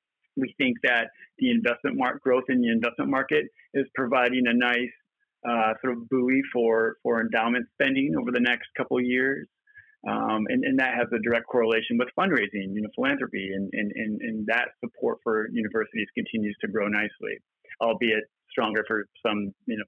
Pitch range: 110-135 Hz